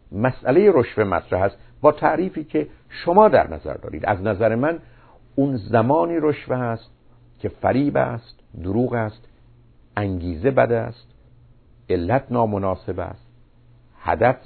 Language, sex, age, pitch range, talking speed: Persian, male, 50-69, 95-125 Hz, 125 wpm